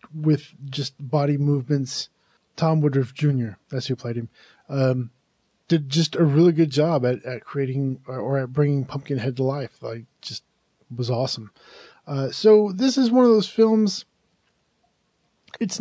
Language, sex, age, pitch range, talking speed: English, male, 20-39, 130-165 Hz, 155 wpm